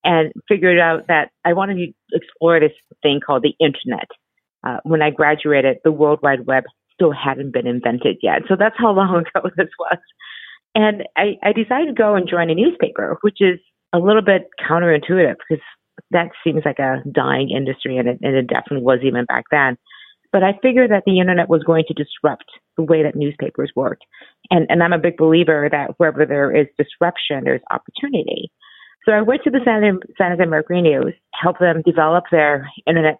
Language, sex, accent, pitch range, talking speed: English, female, American, 150-195 Hz, 195 wpm